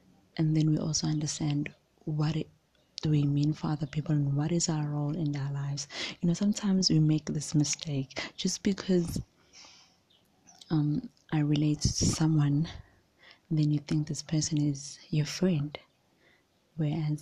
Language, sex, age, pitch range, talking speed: English, female, 20-39, 145-165 Hz, 155 wpm